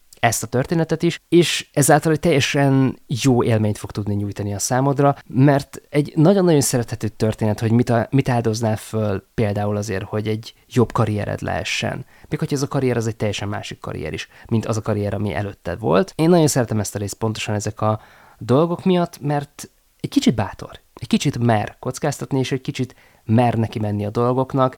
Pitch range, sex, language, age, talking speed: 110-135 Hz, male, Hungarian, 20-39, 190 wpm